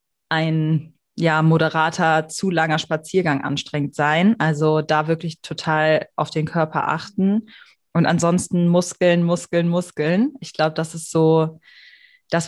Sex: female